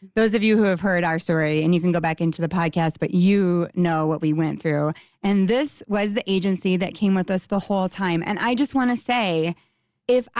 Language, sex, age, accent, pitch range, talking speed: English, female, 20-39, American, 170-215 Hz, 240 wpm